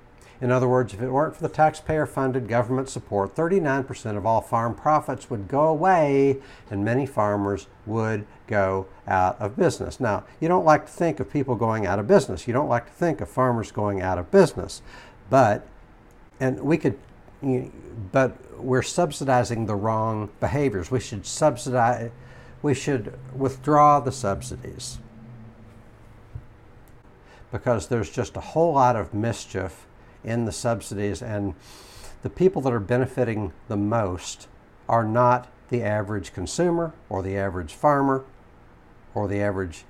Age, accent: 60-79, American